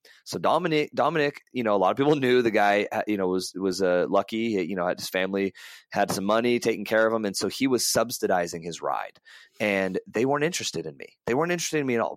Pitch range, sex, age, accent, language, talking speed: 100-130 Hz, male, 30-49, American, English, 240 wpm